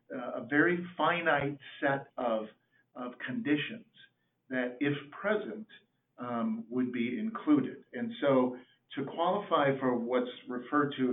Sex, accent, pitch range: male, American, 120-150 Hz